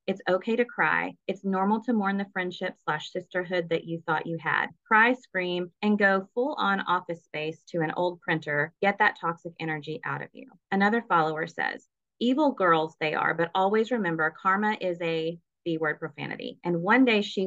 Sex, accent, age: female, American, 30-49